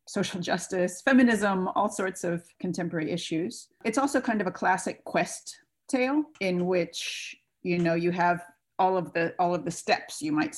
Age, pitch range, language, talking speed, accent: 40-59, 165-190 Hz, English, 175 wpm, American